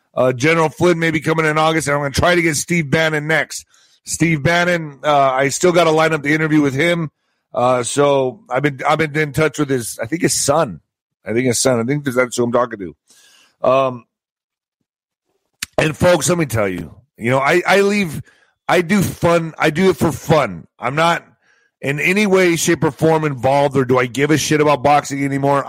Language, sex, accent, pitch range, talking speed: English, male, American, 125-155 Hz, 220 wpm